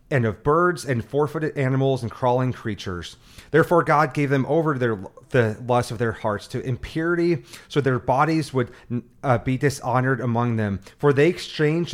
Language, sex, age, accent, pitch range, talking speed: English, male, 30-49, American, 115-145 Hz, 170 wpm